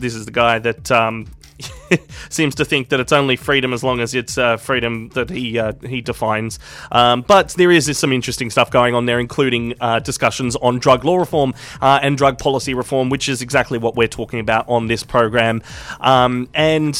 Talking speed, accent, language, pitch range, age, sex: 210 wpm, Australian, English, 120-140 Hz, 20-39, male